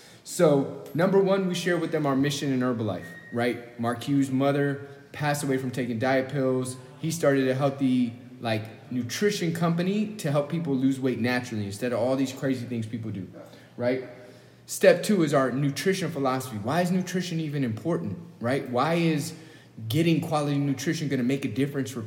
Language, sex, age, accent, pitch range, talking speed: English, male, 30-49, American, 120-145 Hz, 180 wpm